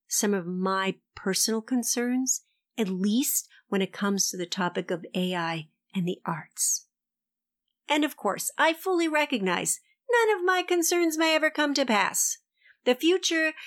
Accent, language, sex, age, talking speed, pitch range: American, English, female, 50-69, 155 wpm, 190-275 Hz